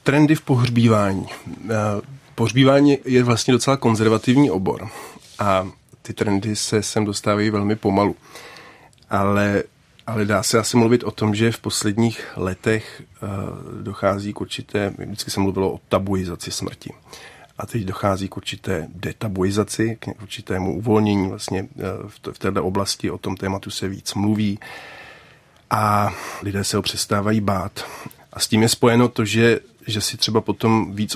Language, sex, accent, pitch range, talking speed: Czech, male, native, 100-110 Hz, 145 wpm